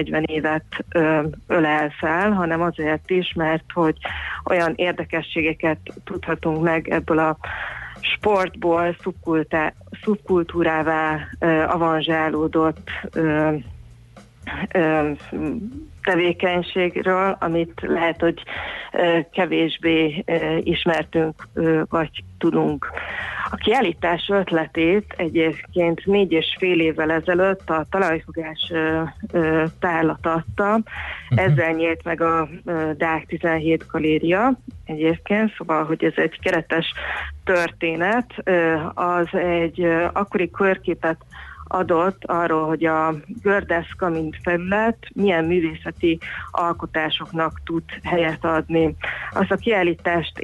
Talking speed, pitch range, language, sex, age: 85 wpm, 160-180 Hz, Hungarian, female, 30-49